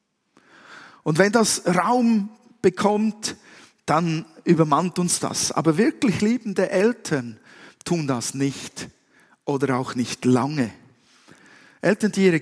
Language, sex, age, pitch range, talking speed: German, male, 50-69, 140-200 Hz, 110 wpm